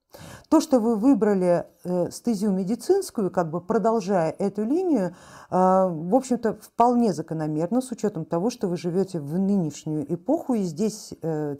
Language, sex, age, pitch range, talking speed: Russian, female, 50-69, 160-210 Hz, 135 wpm